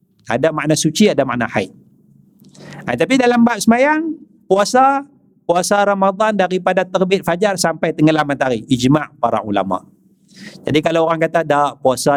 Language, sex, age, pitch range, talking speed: Malay, male, 50-69, 155-205 Hz, 150 wpm